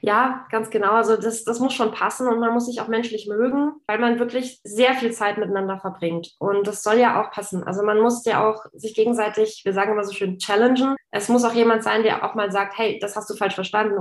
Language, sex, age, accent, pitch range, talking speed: German, female, 20-39, German, 195-230 Hz, 250 wpm